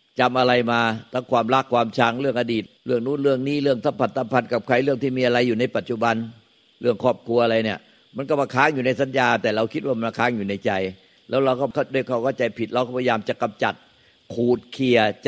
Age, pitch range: 60-79, 120-140 Hz